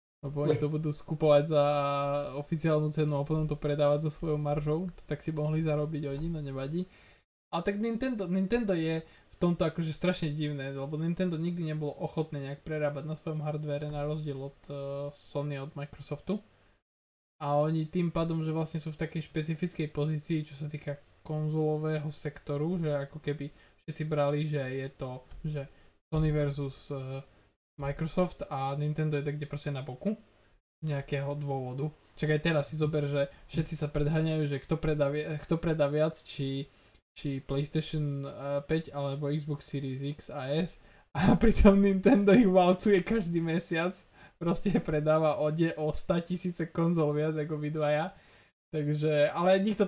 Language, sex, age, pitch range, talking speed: Slovak, male, 20-39, 145-165 Hz, 165 wpm